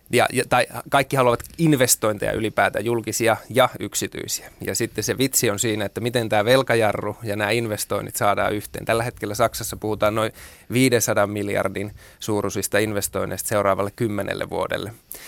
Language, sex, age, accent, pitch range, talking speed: Finnish, male, 20-39, native, 100-120 Hz, 135 wpm